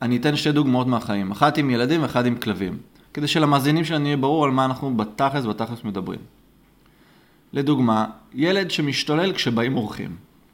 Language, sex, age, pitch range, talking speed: Hebrew, male, 20-39, 115-150 Hz, 155 wpm